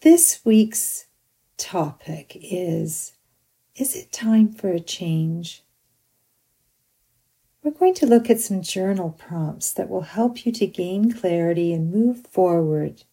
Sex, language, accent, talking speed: female, English, American, 130 wpm